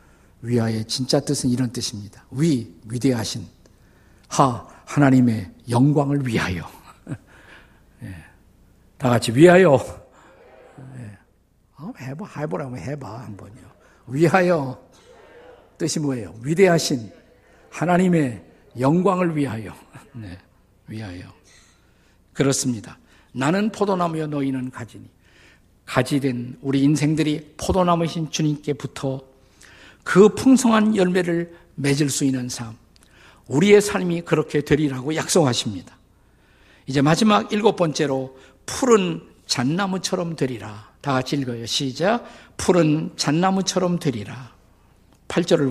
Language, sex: Korean, male